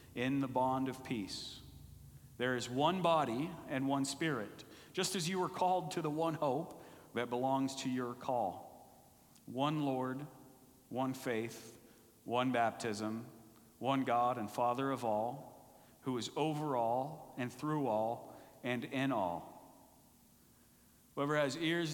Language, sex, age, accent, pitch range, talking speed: English, male, 50-69, American, 125-140 Hz, 140 wpm